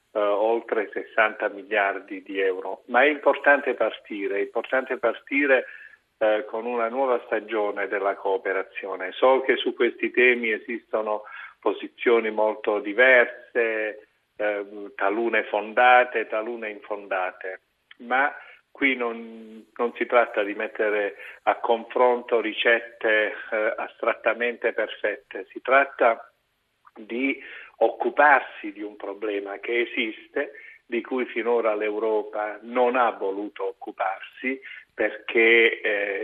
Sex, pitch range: male, 105-130 Hz